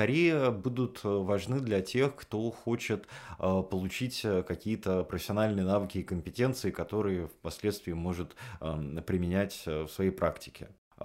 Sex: male